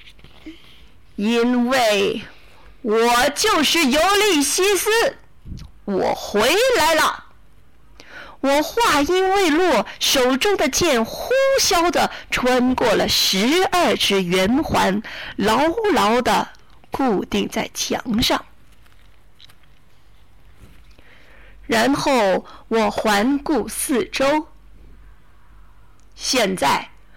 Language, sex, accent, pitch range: Chinese, female, native, 240-360 Hz